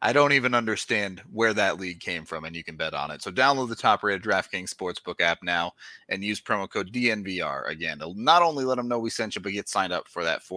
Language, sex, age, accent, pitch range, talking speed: English, male, 30-49, American, 95-130 Hz, 250 wpm